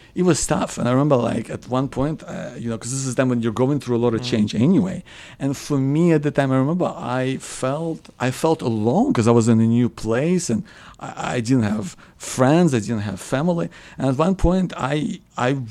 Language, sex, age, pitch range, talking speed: English, male, 50-69, 115-150 Hz, 235 wpm